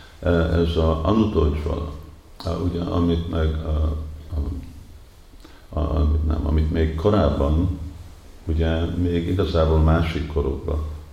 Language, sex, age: Hungarian, male, 50-69